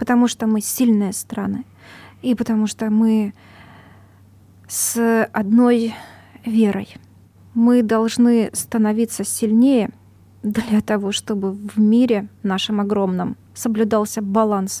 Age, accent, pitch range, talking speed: 20-39, native, 205-240 Hz, 100 wpm